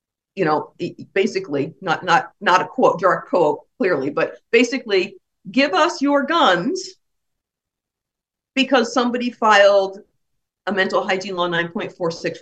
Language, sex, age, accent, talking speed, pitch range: English, female, 50-69, American, 115 wpm, 200-325 Hz